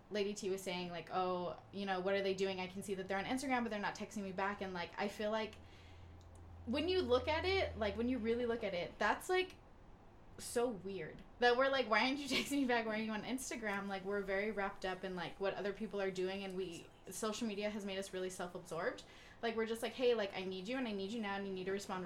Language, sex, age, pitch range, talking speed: English, female, 10-29, 185-220 Hz, 270 wpm